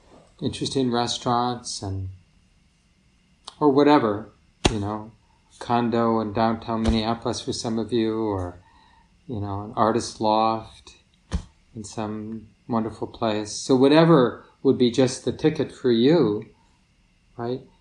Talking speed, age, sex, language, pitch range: 120 wpm, 40-59, male, English, 110-140 Hz